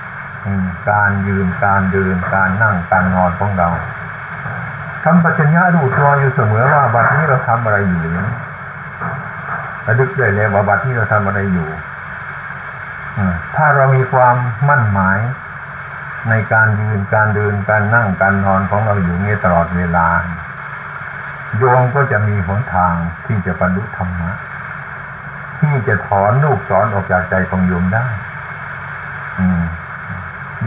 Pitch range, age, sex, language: 95-125 Hz, 60-79, male, Thai